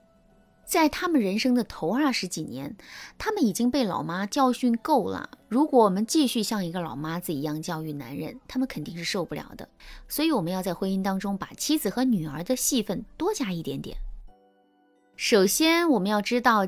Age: 20-39